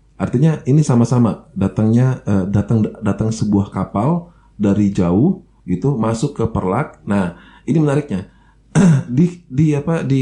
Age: 30-49